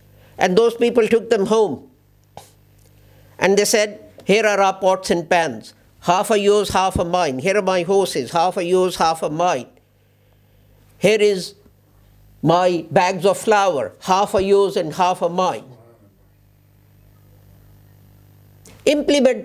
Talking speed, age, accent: 140 wpm, 60-79, Indian